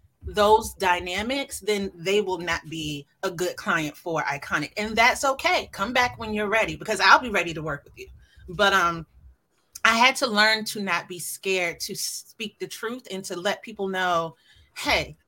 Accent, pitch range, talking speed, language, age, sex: American, 190-245 Hz, 190 wpm, English, 30-49, female